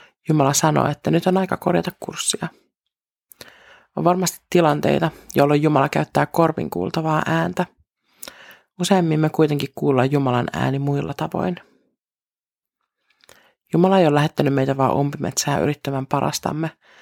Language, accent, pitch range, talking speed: Finnish, native, 140-170 Hz, 120 wpm